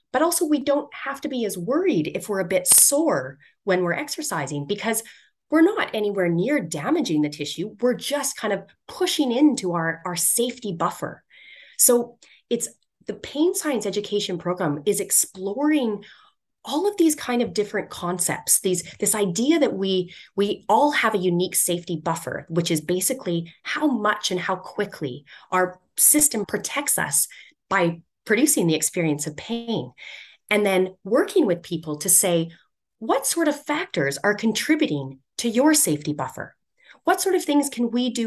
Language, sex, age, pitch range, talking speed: English, female, 30-49, 175-275 Hz, 165 wpm